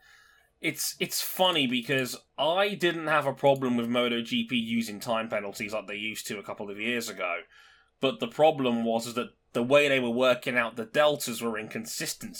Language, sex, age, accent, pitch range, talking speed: English, male, 20-39, British, 120-155 Hz, 190 wpm